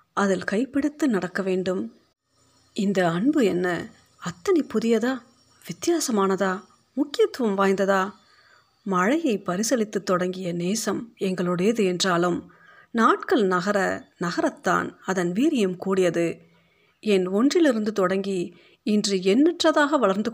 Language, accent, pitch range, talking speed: Tamil, native, 180-240 Hz, 90 wpm